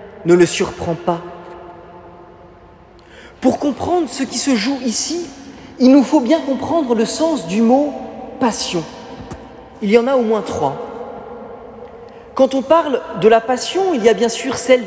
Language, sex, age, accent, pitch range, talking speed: French, male, 40-59, French, 215-275 Hz, 160 wpm